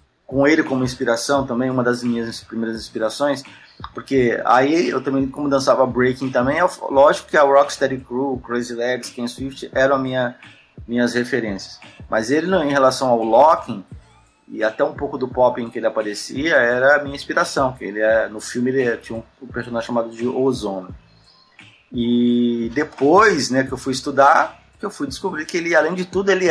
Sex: male